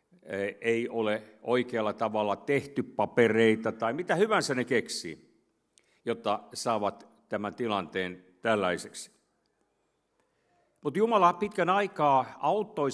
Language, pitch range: Finnish, 120-155 Hz